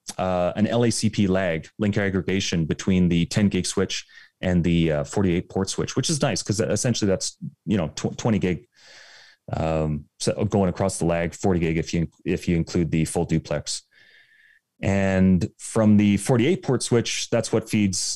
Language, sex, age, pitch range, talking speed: English, male, 30-49, 90-105 Hz, 170 wpm